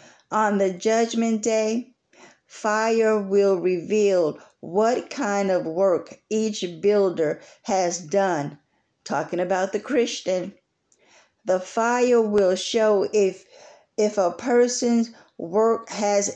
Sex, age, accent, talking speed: female, 50-69, American, 105 wpm